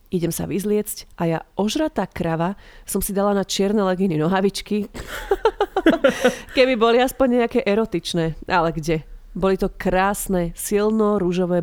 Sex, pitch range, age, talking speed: female, 175-225 Hz, 30-49, 130 wpm